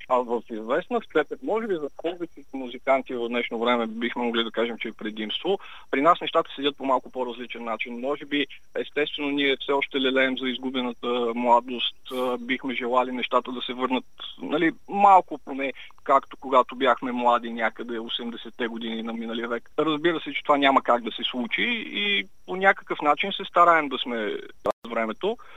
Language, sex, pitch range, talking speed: Bulgarian, male, 125-170 Hz, 175 wpm